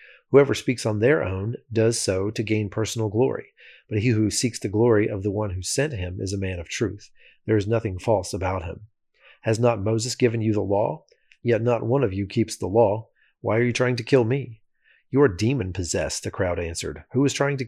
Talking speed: 225 wpm